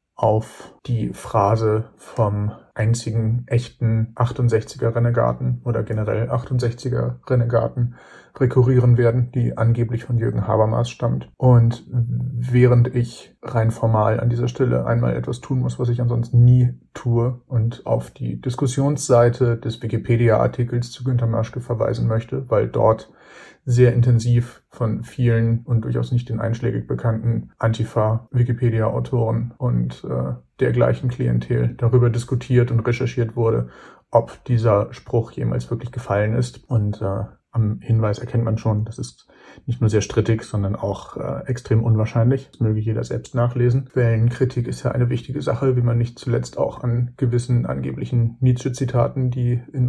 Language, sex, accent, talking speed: German, male, German, 140 wpm